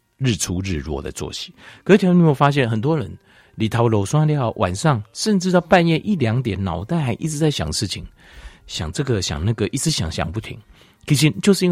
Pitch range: 90-140 Hz